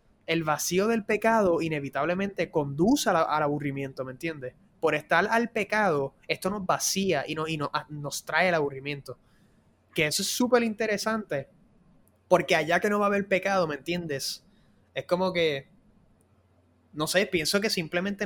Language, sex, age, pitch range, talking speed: Spanish, male, 20-39, 150-195 Hz, 150 wpm